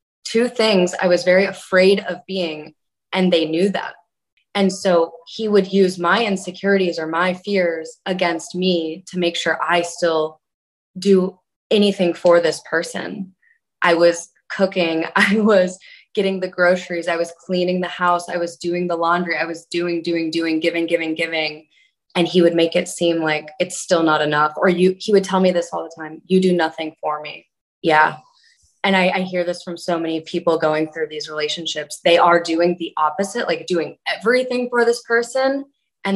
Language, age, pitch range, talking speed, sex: English, 20-39, 165-190 Hz, 190 wpm, female